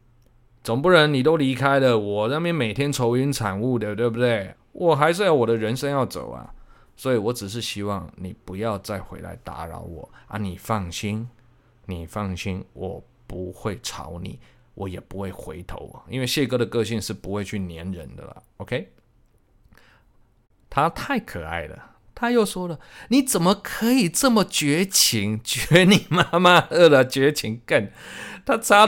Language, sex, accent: Chinese, male, native